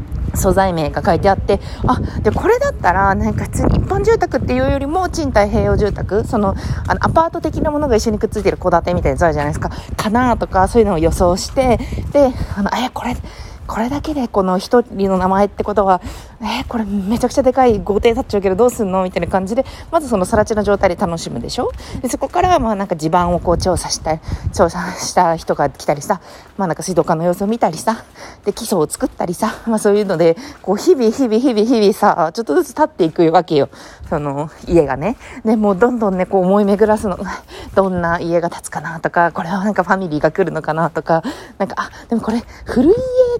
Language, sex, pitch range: Japanese, female, 180-255 Hz